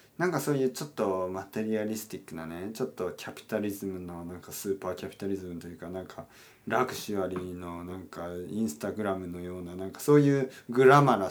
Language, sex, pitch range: Japanese, male, 95-135 Hz